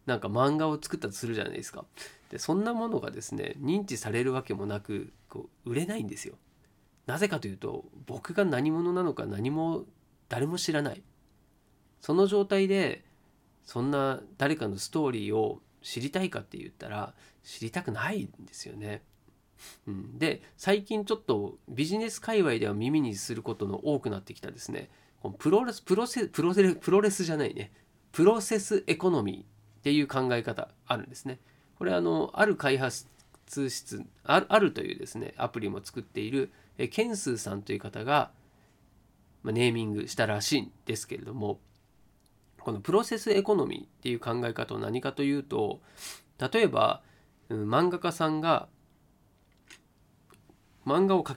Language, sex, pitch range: Japanese, male, 110-185 Hz